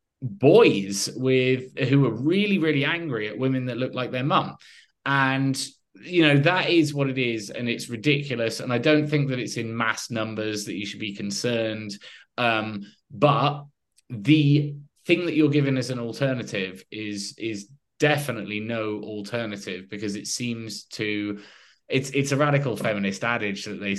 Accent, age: British, 20-39